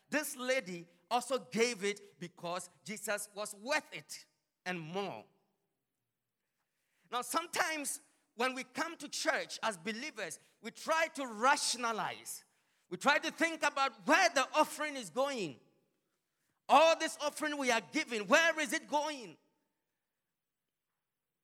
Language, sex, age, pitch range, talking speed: English, male, 40-59, 215-305 Hz, 125 wpm